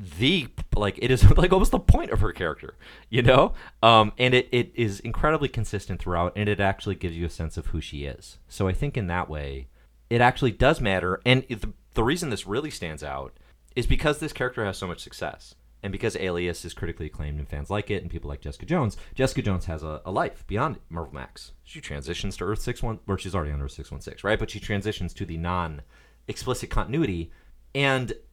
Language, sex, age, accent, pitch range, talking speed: English, male, 30-49, American, 80-115 Hz, 220 wpm